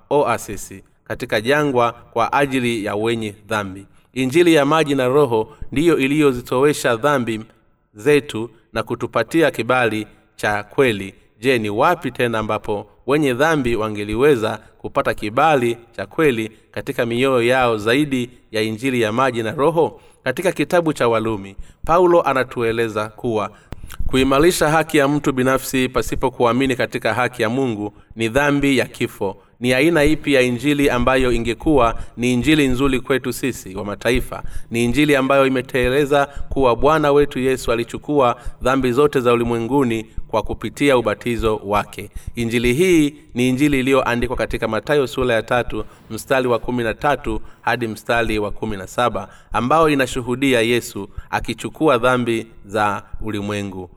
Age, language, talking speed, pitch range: 30-49, Swahili, 135 wpm, 110-135 Hz